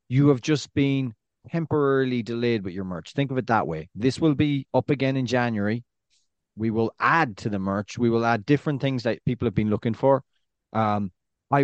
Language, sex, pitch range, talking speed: English, male, 110-140 Hz, 205 wpm